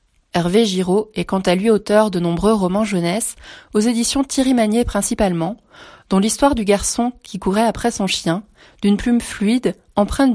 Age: 20-39